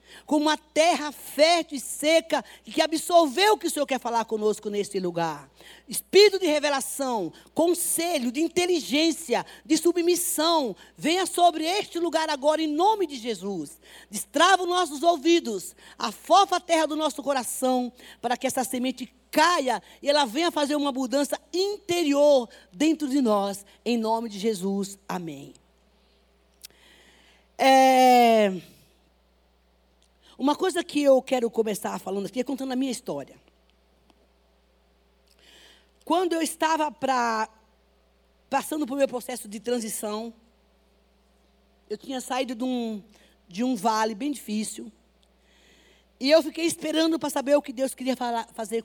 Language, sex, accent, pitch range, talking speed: Portuguese, female, Brazilian, 210-305 Hz, 130 wpm